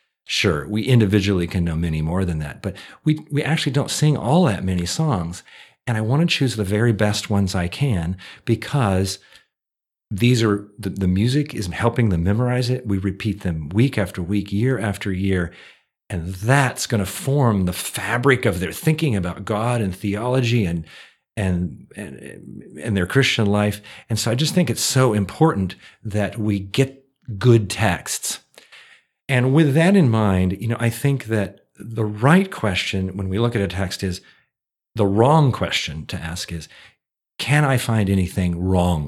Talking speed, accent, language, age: 175 wpm, American, English, 50-69